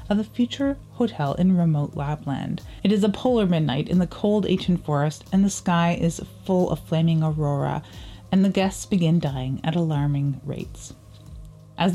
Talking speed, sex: 170 wpm, female